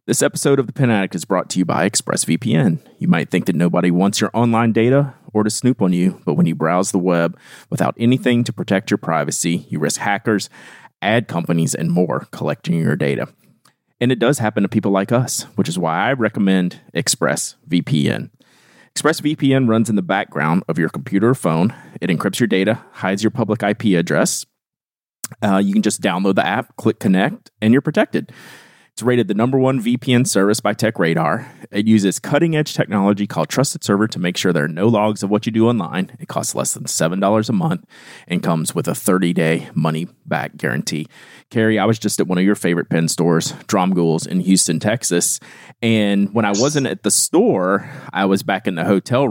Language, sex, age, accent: English, male, 30-49, American